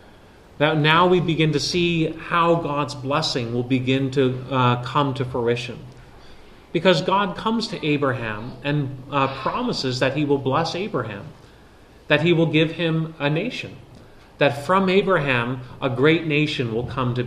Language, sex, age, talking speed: English, male, 30-49, 155 wpm